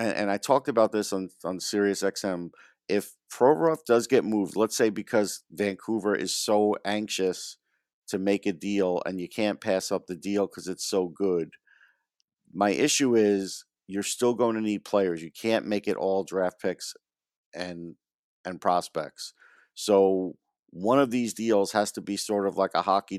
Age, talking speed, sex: 50-69, 175 wpm, male